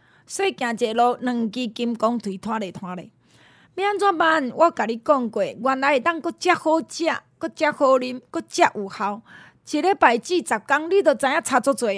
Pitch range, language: 235-335 Hz, Chinese